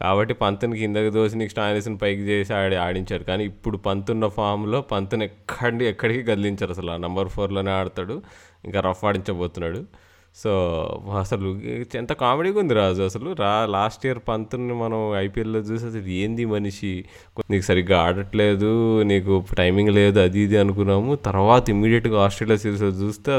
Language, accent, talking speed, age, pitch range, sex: Telugu, native, 150 wpm, 20-39, 95-115 Hz, male